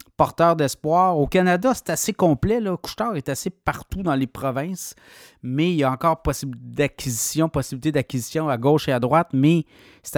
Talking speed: 185 wpm